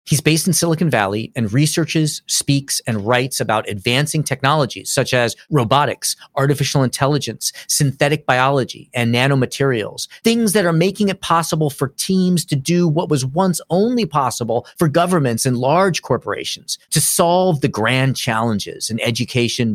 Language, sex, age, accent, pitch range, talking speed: English, male, 40-59, American, 125-160 Hz, 150 wpm